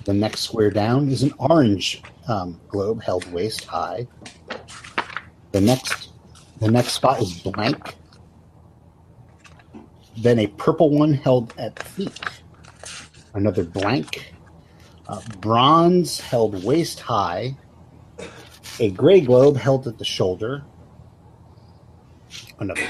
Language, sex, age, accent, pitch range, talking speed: English, male, 50-69, American, 95-125 Hz, 105 wpm